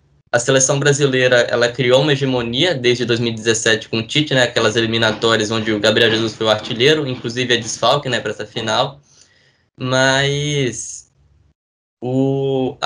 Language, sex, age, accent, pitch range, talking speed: Portuguese, male, 10-29, Brazilian, 120-140 Hz, 155 wpm